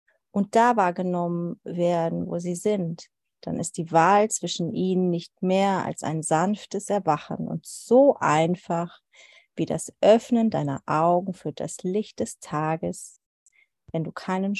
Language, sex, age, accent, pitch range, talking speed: German, female, 30-49, German, 165-200 Hz, 145 wpm